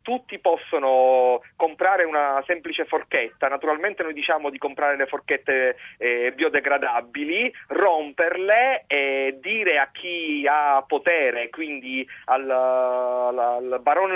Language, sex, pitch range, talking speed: Italian, male, 135-185 Hz, 110 wpm